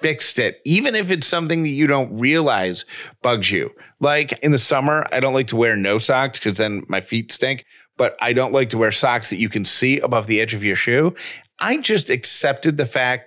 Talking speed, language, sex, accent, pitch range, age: 225 wpm, English, male, American, 110-145 Hz, 40-59